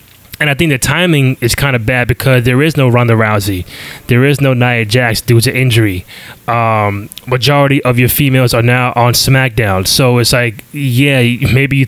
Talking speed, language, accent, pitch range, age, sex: 190 wpm, English, American, 120-140 Hz, 20-39, male